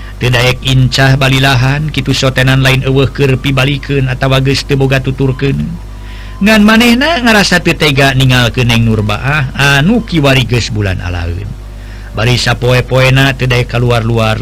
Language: Indonesian